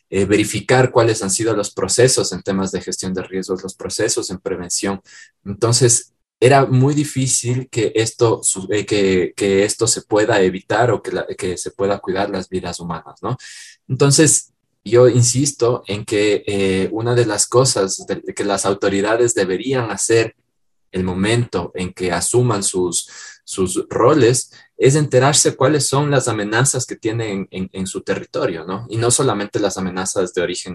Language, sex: Spanish, male